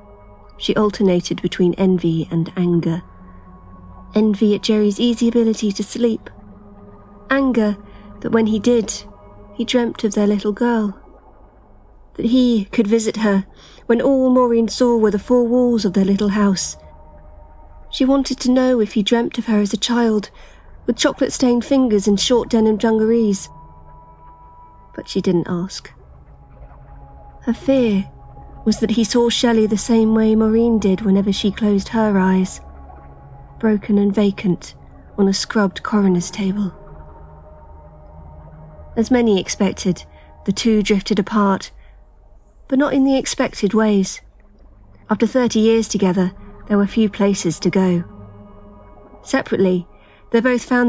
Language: English